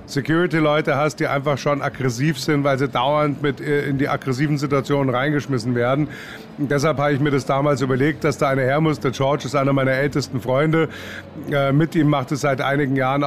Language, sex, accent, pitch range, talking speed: German, male, German, 135-155 Hz, 195 wpm